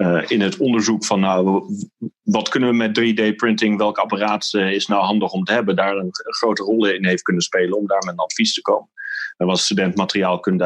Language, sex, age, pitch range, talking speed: Dutch, male, 40-59, 95-120 Hz, 225 wpm